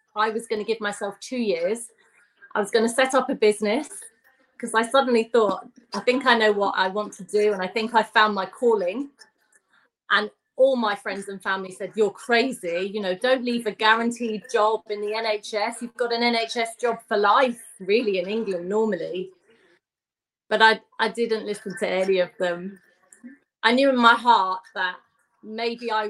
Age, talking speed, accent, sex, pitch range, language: 30-49, 190 wpm, British, female, 200-235 Hz, English